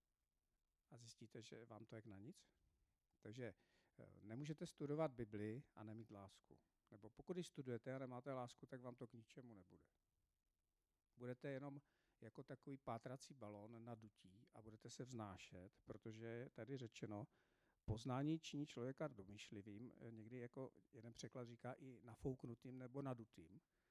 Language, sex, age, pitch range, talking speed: Czech, male, 50-69, 105-130 Hz, 140 wpm